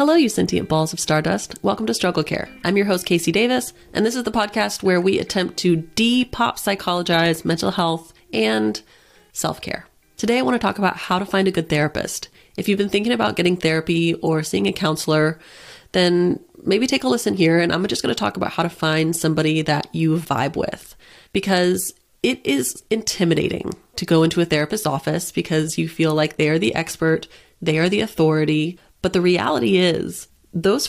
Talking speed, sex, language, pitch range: 190 wpm, female, English, 160-200 Hz